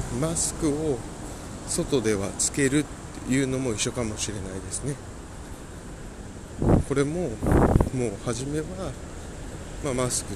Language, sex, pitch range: Japanese, male, 100-130 Hz